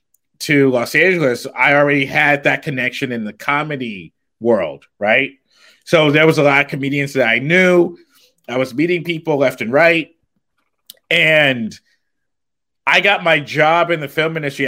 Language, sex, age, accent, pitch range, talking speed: English, male, 30-49, American, 120-150 Hz, 160 wpm